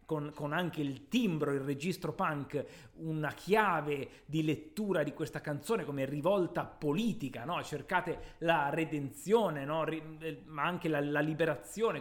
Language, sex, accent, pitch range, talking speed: Italian, male, native, 145-175 Hz, 135 wpm